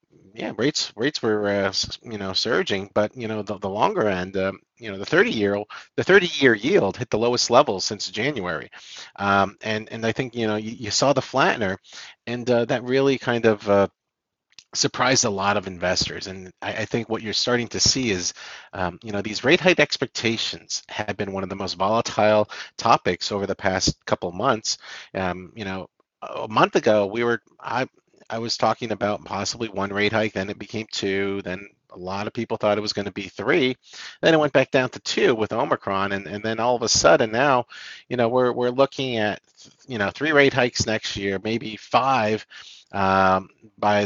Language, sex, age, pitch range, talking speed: English, male, 40-59, 100-120 Hz, 210 wpm